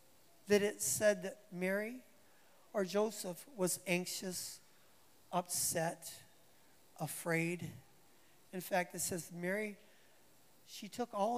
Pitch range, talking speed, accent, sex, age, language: 170-220 Hz, 100 wpm, American, male, 40-59, English